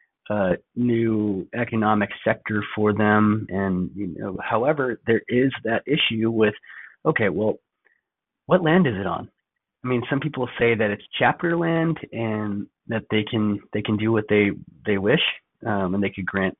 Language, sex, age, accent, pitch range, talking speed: English, male, 30-49, American, 100-120 Hz, 170 wpm